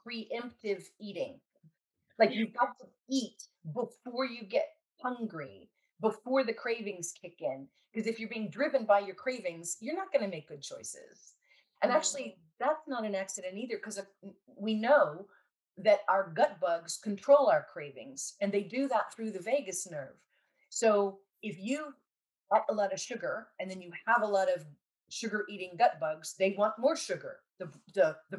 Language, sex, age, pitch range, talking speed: English, female, 40-59, 185-250 Hz, 175 wpm